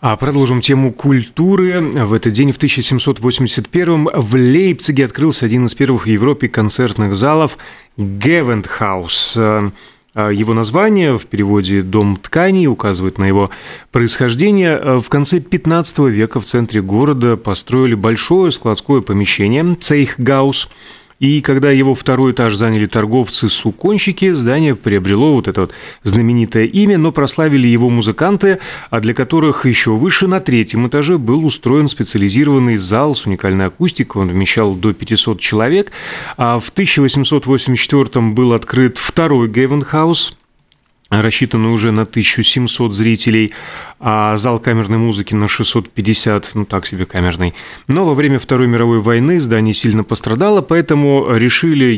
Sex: male